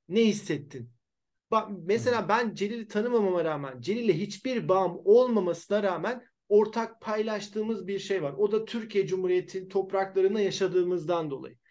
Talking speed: 130 wpm